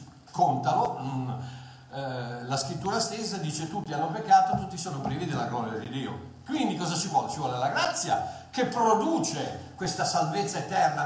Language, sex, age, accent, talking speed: Italian, male, 50-69, native, 150 wpm